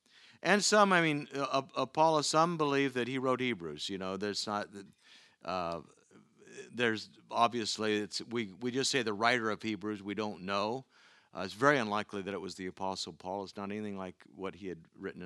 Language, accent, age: English, American, 50-69